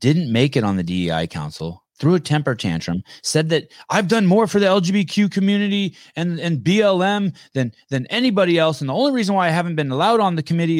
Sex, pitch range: male, 100-155 Hz